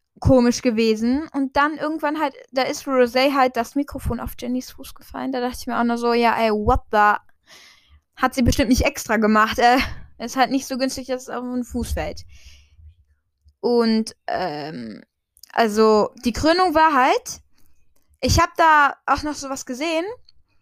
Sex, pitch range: female, 230-295 Hz